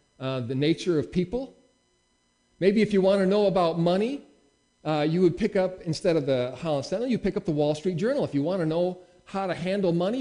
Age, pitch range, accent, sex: 40-59, 110-165 Hz, American, male